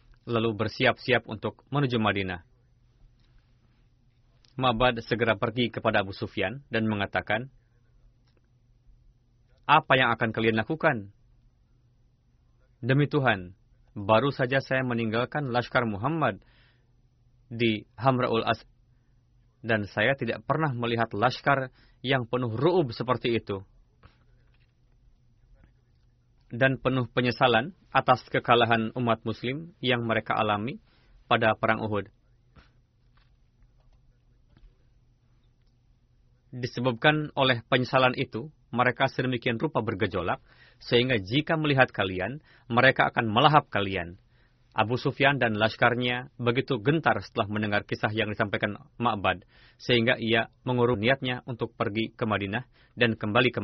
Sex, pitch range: male, 115-125 Hz